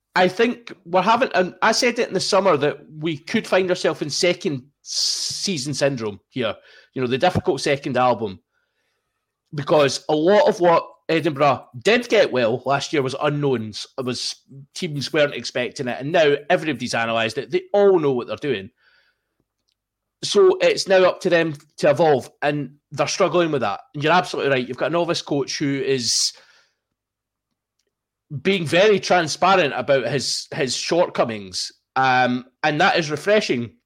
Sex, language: male, English